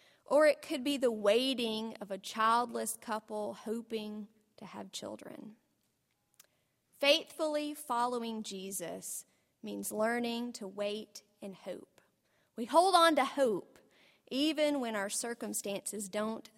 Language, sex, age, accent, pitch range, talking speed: English, female, 30-49, American, 205-265 Hz, 120 wpm